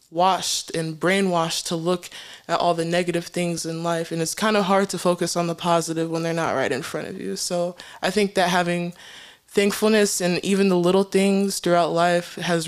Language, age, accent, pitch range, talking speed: English, 20-39, American, 170-205 Hz, 210 wpm